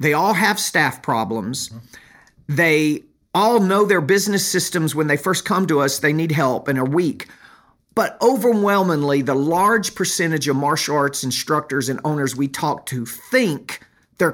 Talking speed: 165 wpm